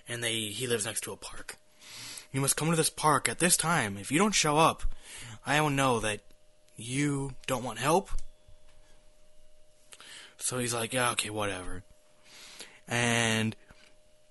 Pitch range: 100-140 Hz